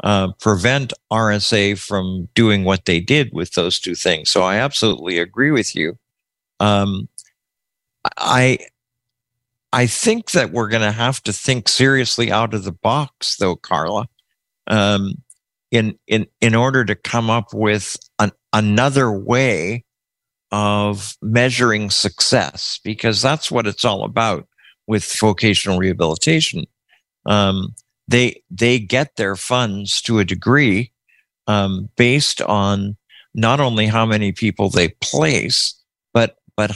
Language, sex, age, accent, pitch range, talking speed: English, male, 50-69, American, 100-125 Hz, 130 wpm